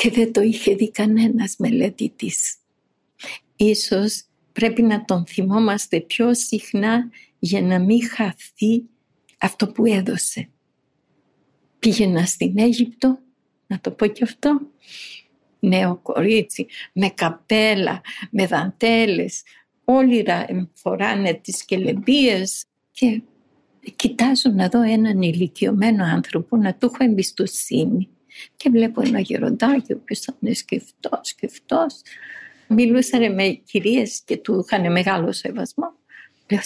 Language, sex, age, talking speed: Greek, female, 50-69, 115 wpm